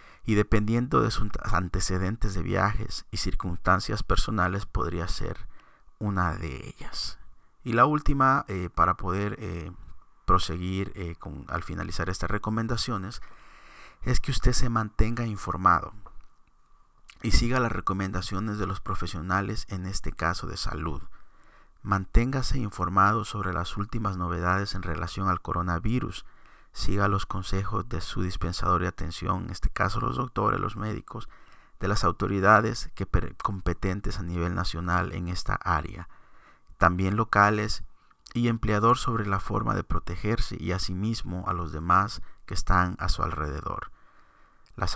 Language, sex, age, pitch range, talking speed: Spanish, male, 50-69, 90-105 Hz, 135 wpm